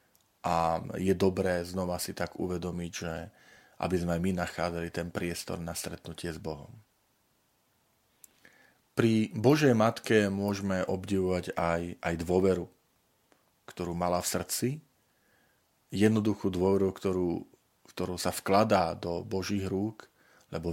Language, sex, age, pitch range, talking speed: Slovak, male, 40-59, 85-105 Hz, 115 wpm